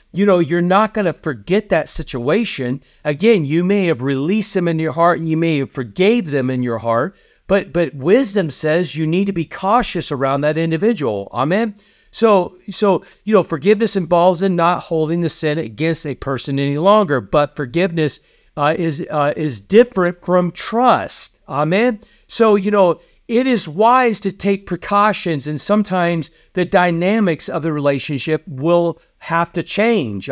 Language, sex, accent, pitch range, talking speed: English, male, American, 150-200 Hz, 170 wpm